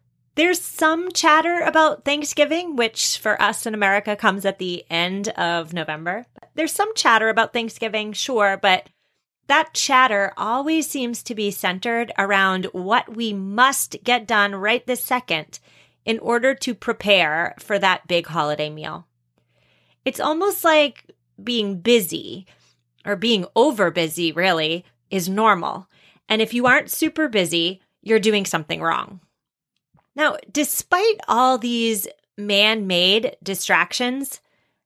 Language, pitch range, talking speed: English, 180-250 Hz, 130 wpm